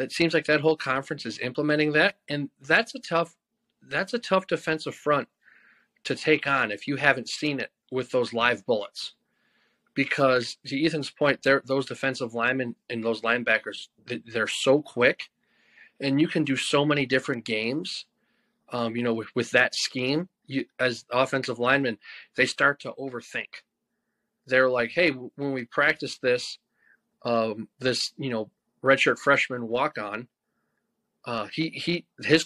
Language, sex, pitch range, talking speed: English, male, 125-155 Hz, 155 wpm